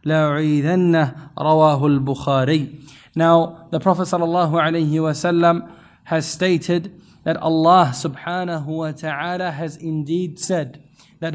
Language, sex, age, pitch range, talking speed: English, male, 20-39, 160-185 Hz, 90 wpm